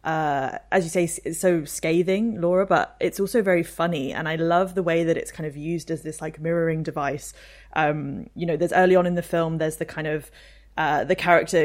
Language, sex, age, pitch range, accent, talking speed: English, female, 20-39, 155-180 Hz, British, 225 wpm